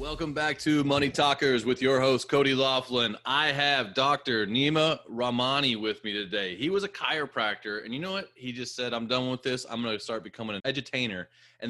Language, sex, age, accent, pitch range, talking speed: English, male, 30-49, American, 105-130 Hz, 210 wpm